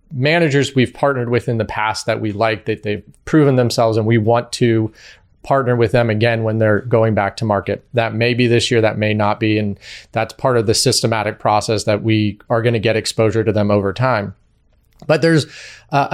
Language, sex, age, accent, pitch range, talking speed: English, male, 30-49, American, 110-130 Hz, 210 wpm